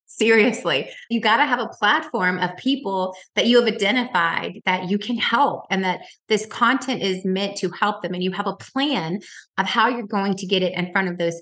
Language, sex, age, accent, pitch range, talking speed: English, female, 20-39, American, 180-230 Hz, 220 wpm